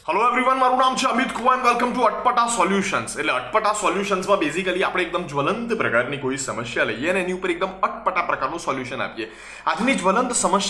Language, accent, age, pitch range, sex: Gujarati, native, 20-39, 150-205 Hz, male